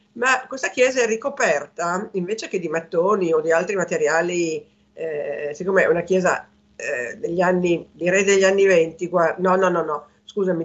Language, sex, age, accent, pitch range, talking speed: Italian, female, 50-69, native, 180-235 Hz, 175 wpm